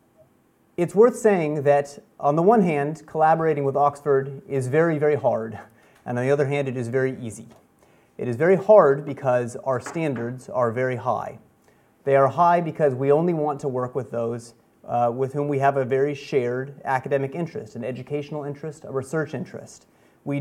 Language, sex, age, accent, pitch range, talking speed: English, male, 30-49, American, 125-145 Hz, 180 wpm